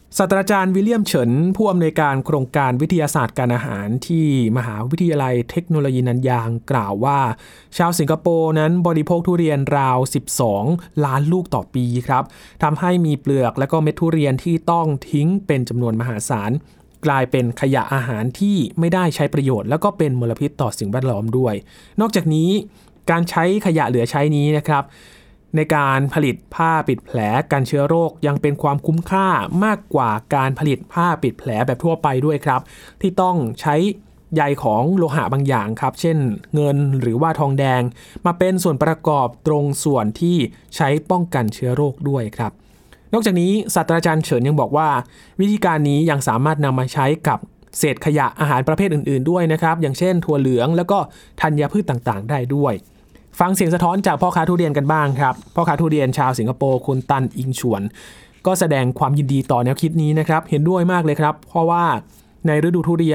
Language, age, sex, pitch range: Thai, 20-39, male, 130-170 Hz